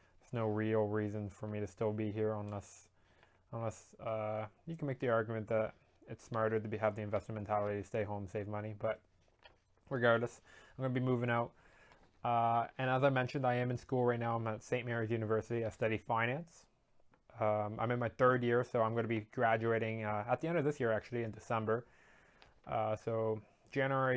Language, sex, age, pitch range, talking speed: English, male, 20-39, 105-120 Hz, 205 wpm